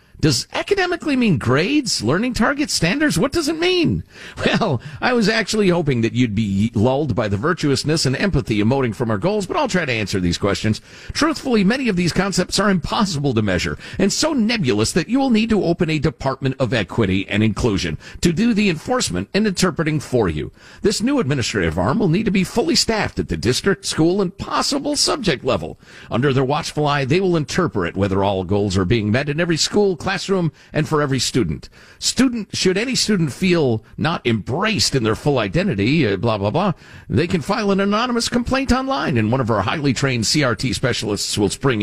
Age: 50-69